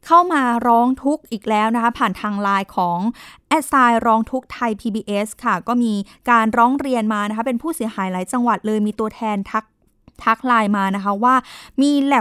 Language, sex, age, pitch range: Thai, female, 20-39, 215-265 Hz